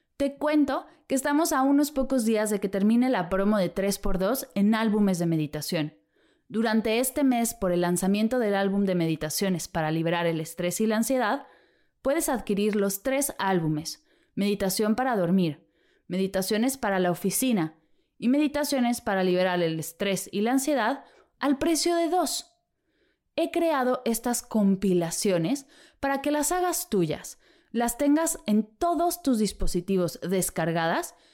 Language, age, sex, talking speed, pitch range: Spanish, 20-39, female, 145 wpm, 190-275 Hz